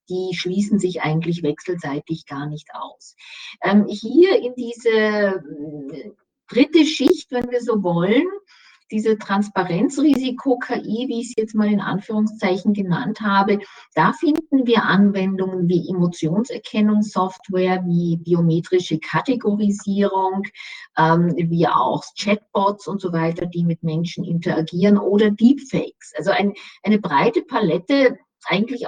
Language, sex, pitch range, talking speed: German, female, 175-220 Hz, 115 wpm